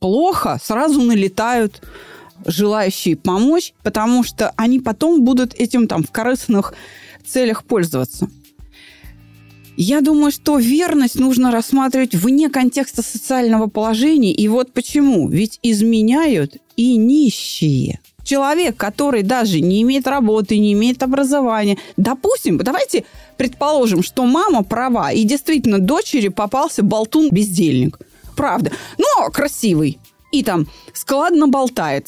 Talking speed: 110 wpm